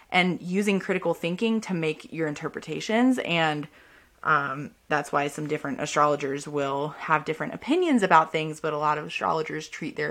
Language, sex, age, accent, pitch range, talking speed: English, female, 20-39, American, 155-185 Hz, 165 wpm